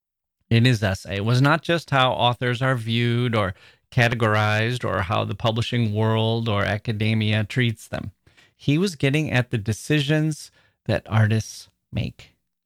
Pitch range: 110-135 Hz